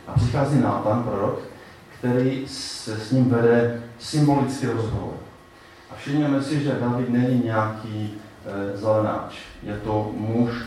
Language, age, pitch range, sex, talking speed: Czech, 30-49, 105-135 Hz, male, 130 wpm